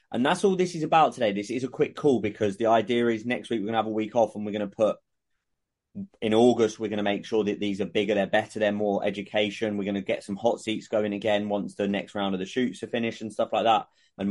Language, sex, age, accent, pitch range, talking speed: English, male, 20-39, British, 100-115 Hz, 290 wpm